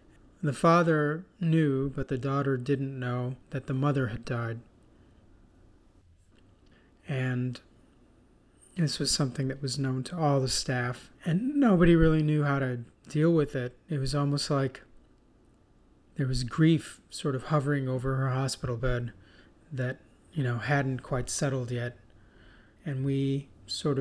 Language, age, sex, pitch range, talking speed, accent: English, 30-49, male, 120-145 Hz, 140 wpm, American